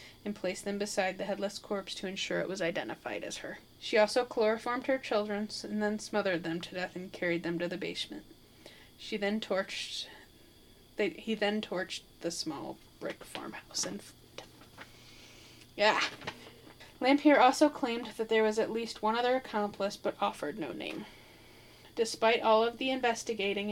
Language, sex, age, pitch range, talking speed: English, female, 10-29, 190-225 Hz, 160 wpm